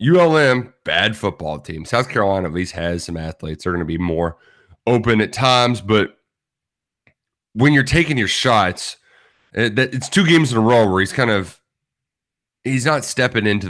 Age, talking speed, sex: 30-49, 170 wpm, male